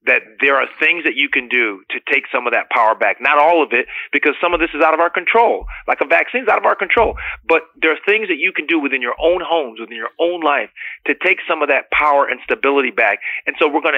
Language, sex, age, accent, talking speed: English, male, 30-49, American, 280 wpm